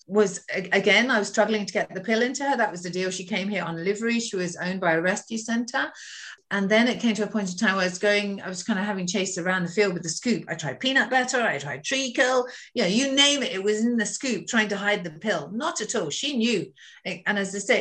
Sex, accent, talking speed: female, British, 275 wpm